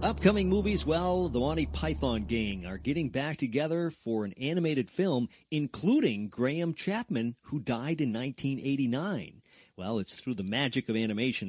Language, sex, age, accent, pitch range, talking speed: English, male, 40-59, American, 110-155 Hz, 150 wpm